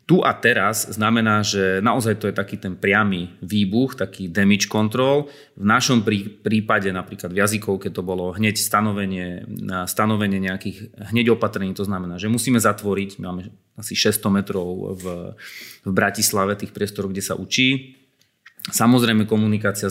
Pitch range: 100-115 Hz